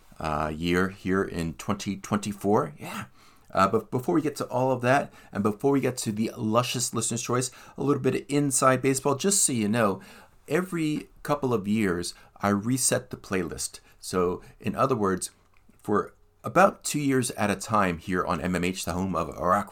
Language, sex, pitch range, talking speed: English, male, 90-130 Hz, 180 wpm